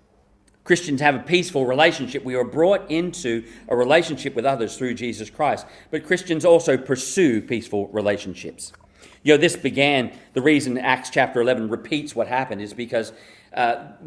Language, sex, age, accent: English, male, 40-59, Australian